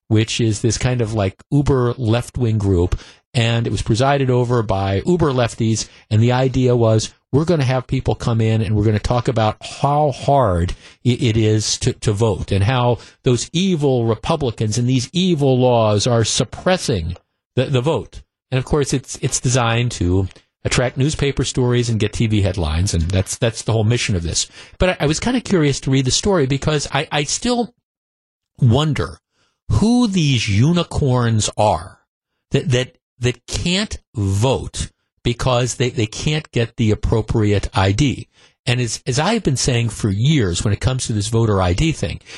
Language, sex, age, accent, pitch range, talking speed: English, male, 50-69, American, 110-140 Hz, 180 wpm